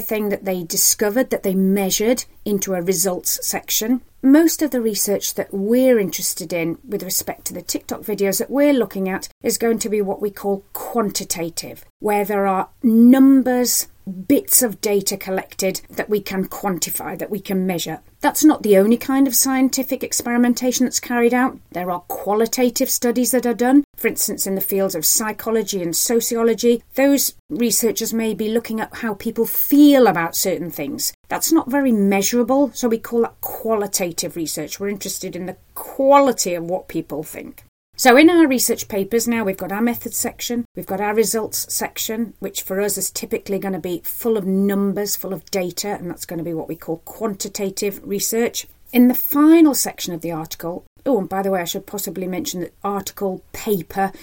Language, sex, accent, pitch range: English, female, British, 190-245 Hz